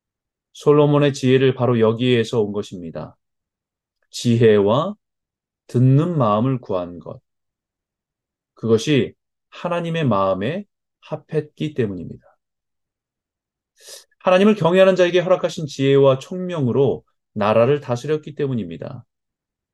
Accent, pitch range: native, 120-170 Hz